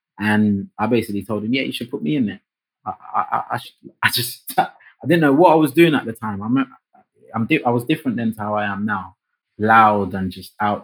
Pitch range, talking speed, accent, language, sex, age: 90-105 Hz, 250 wpm, British, English, male, 20-39